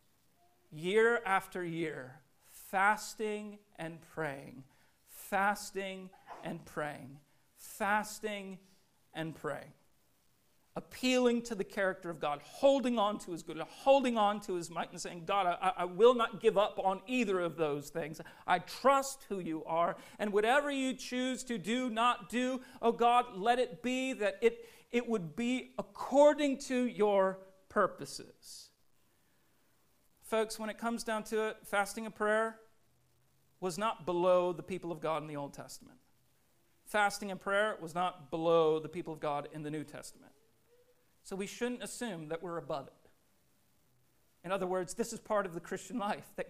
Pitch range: 175-230 Hz